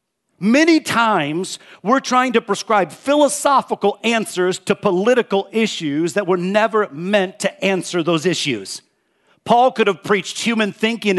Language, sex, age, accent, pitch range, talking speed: English, male, 50-69, American, 180-230 Hz, 135 wpm